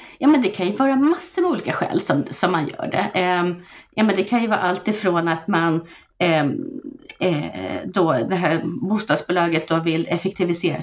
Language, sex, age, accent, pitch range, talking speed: Swedish, female, 30-49, native, 165-235 Hz, 190 wpm